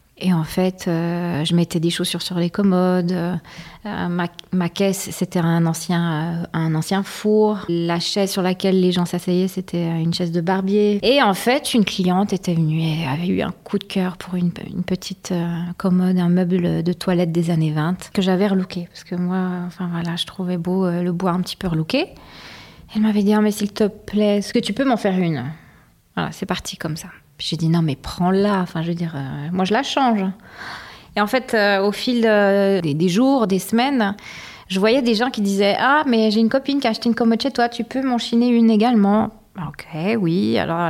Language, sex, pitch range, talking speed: French, female, 175-220 Hz, 225 wpm